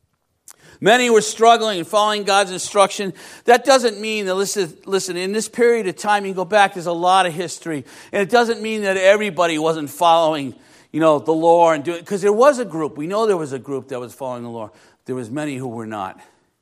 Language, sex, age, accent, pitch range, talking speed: English, male, 50-69, American, 150-230 Hz, 230 wpm